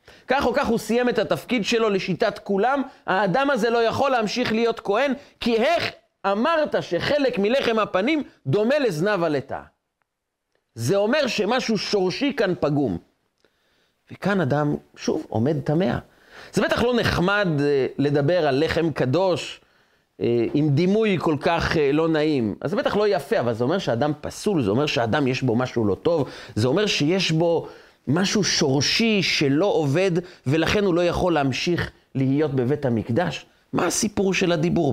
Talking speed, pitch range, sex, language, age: 160 wpm, 165-245 Hz, male, Hebrew, 30-49